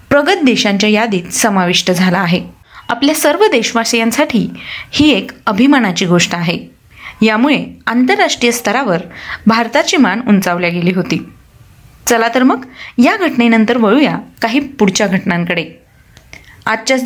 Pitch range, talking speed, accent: 205-265 Hz, 115 wpm, native